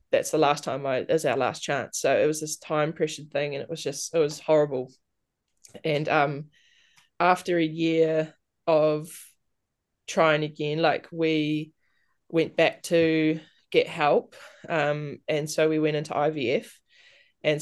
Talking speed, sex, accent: 155 wpm, female, Australian